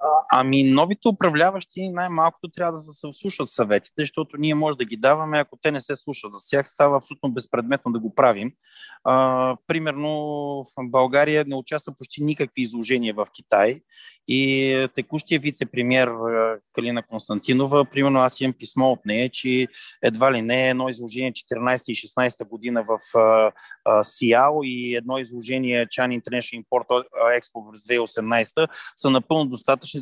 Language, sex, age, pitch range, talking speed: Bulgarian, male, 30-49, 120-145 Hz, 140 wpm